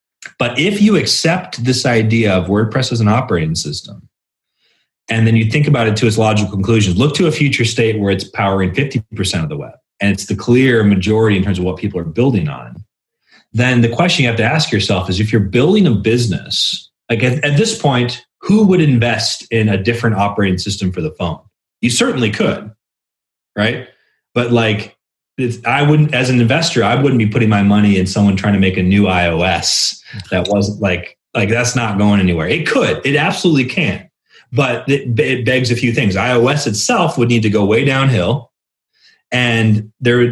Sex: male